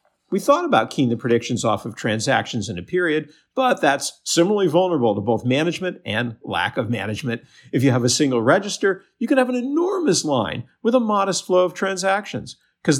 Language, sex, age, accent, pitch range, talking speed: English, male, 50-69, American, 115-170 Hz, 195 wpm